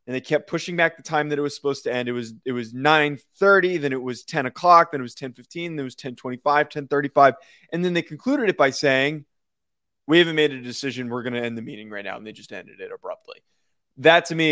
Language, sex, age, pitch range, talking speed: English, male, 20-39, 130-170 Hz, 250 wpm